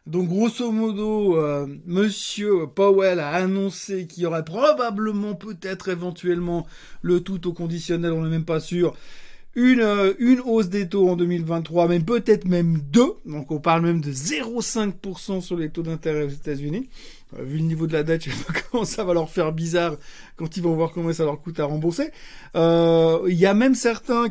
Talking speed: 195 wpm